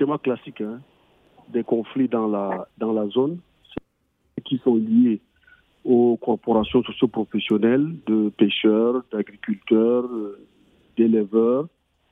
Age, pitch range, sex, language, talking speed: 50-69, 115-140 Hz, male, French, 95 wpm